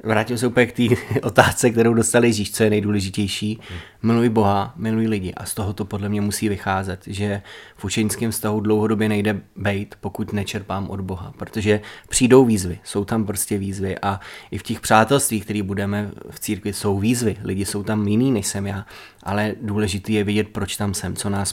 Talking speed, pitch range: 190 wpm, 100-115 Hz